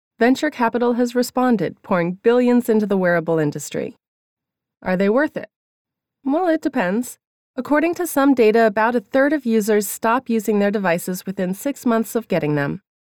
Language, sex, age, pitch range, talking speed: English, female, 30-49, 180-245 Hz, 165 wpm